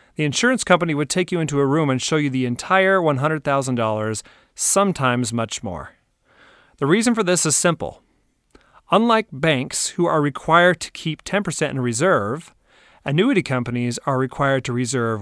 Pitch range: 120-160 Hz